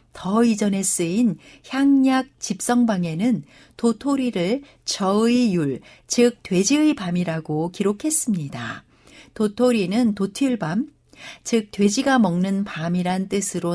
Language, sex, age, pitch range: Korean, female, 60-79, 175-240 Hz